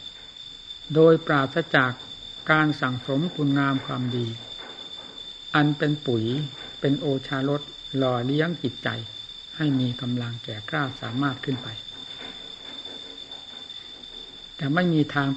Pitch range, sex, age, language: 125-150 Hz, male, 60-79, Thai